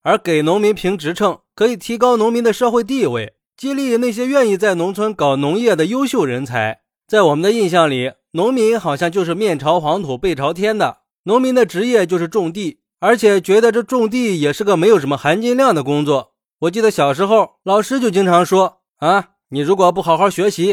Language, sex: Chinese, male